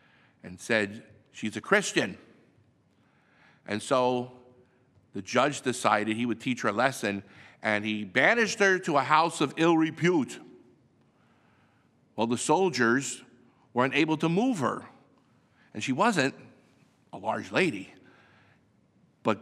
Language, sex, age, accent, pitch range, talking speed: English, male, 50-69, American, 115-145 Hz, 125 wpm